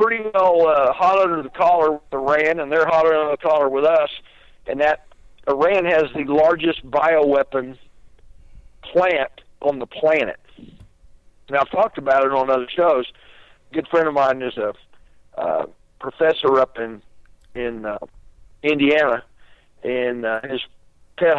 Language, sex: English, male